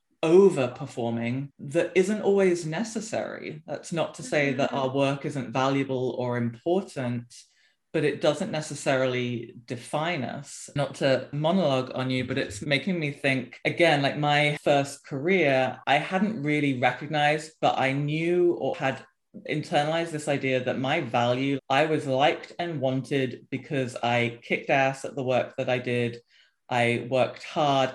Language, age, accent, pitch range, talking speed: English, 20-39, British, 125-150 Hz, 150 wpm